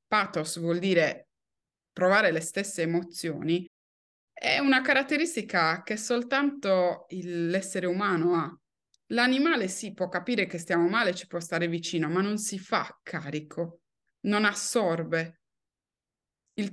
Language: Italian